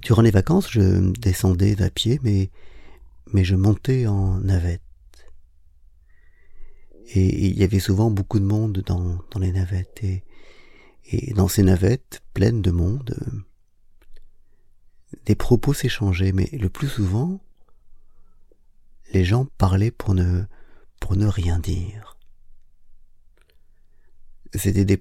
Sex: male